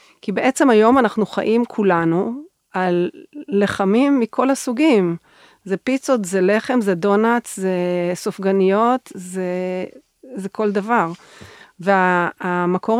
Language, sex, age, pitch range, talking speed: Hebrew, female, 40-59, 180-215 Hz, 105 wpm